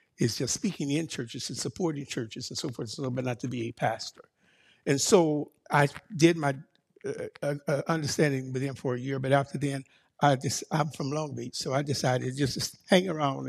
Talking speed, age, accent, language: 220 wpm, 60-79, American, English